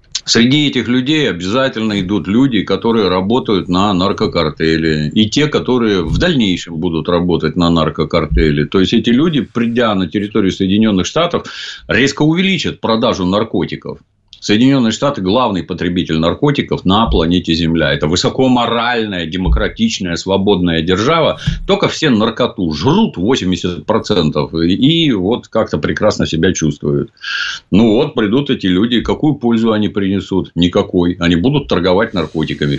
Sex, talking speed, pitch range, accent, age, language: male, 130 wpm, 90-130 Hz, native, 50-69, Russian